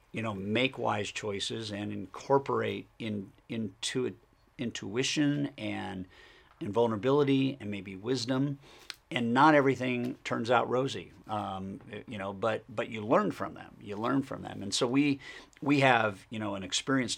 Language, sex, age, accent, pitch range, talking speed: English, male, 50-69, American, 105-125 Hz, 155 wpm